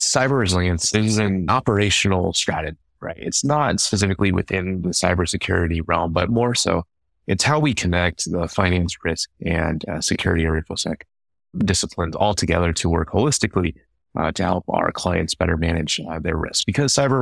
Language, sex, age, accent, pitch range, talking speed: English, male, 30-49, American, 80-100 Hz, 165 wpm